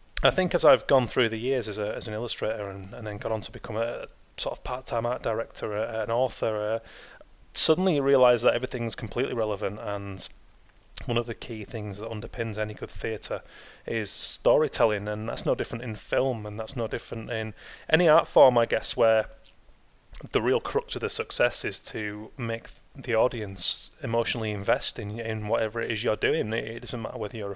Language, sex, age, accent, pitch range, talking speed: English, male, 30-49, British, 105-120 Hz, 205 wpm